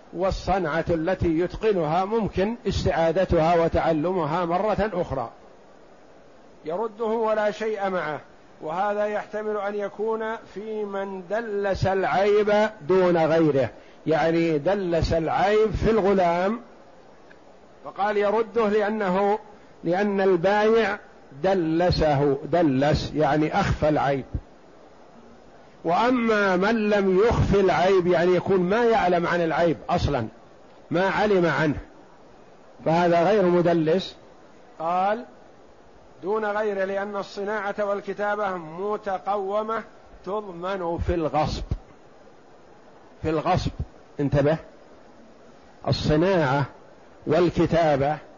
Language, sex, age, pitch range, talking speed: Arabic, male, 50-69, 165-205 Hz, 85 wpm